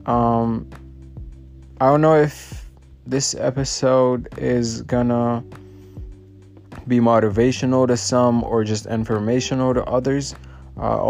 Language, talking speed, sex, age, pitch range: English, 105 wpm, male, 20-39, 105-120 Hz